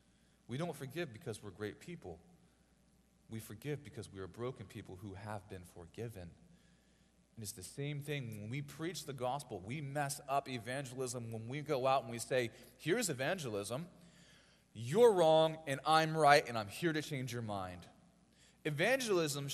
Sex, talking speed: male, 165 wpm